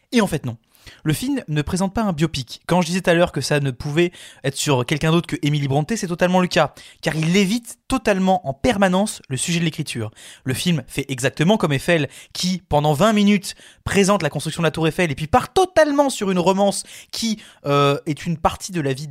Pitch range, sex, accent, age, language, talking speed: 140-185 Hz, male, French, 20-39, French, 230 wpm